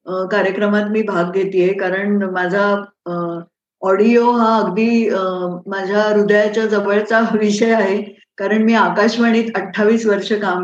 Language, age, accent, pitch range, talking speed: Marathi, 20-39, native, 195-220 Hz, 130 wpm